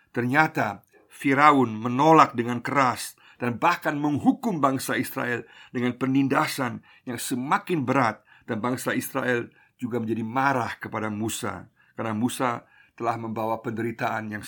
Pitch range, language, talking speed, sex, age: 115-145 Hz, Indonesian, 120 wpm, male, 50-69